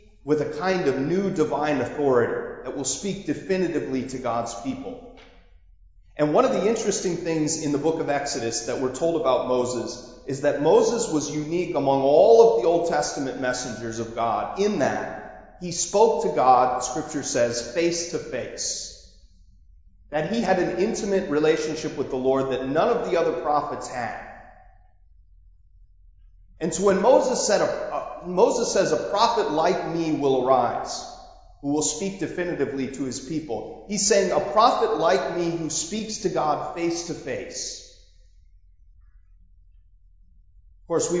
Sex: male